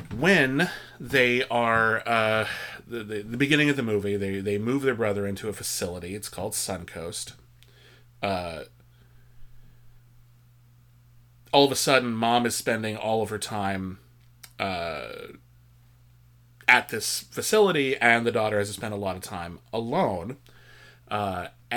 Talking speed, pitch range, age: 140 wpm, 105-125 Hz, 30-49